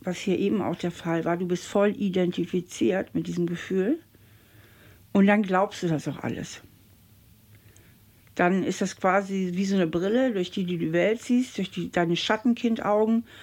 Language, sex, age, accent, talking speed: German, female, 60-79, German, 175 wpm